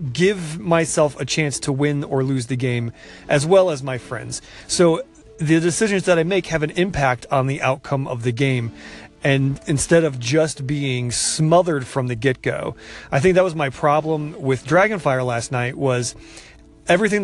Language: English